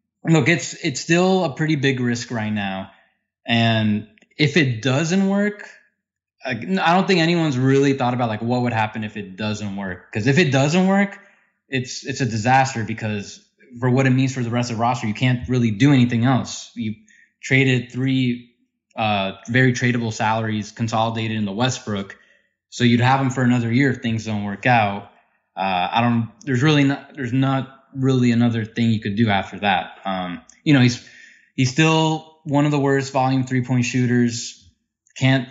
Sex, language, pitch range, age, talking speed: male, English, 115-145 Hz, 20-39, 190 wpm